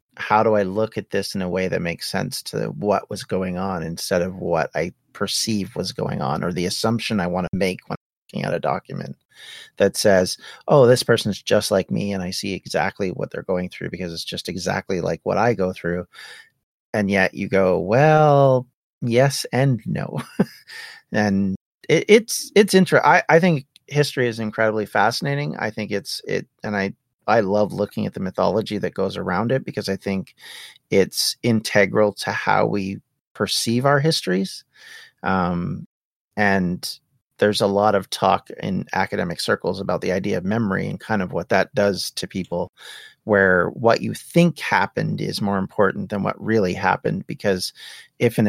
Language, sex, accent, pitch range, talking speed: English, male, American, 95-120 Hz, 180 wpm